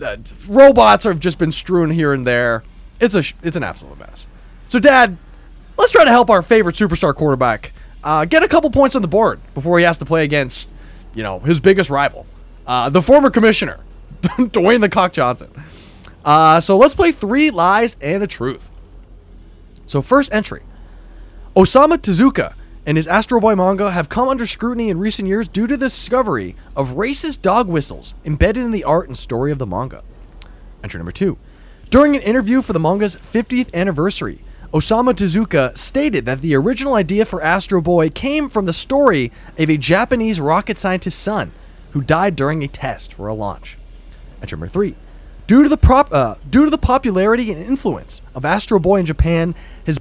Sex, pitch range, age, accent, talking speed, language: male, 140-230 Hz, 20-39, American, 185 wpm, English